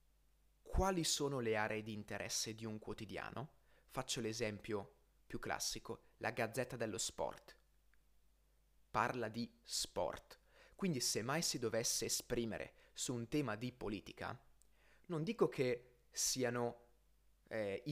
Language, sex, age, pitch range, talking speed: Italian, male, 30-49, 110-140 Hz, 120 wpm